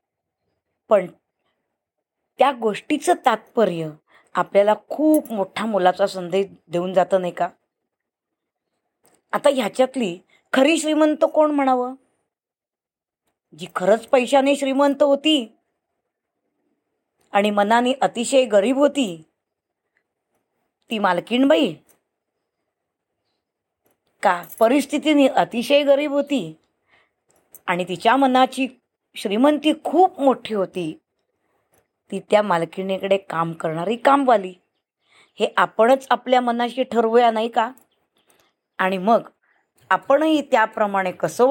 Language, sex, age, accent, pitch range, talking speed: Marathi, female, 20-39, native, 190-270 Hz, 90 wpm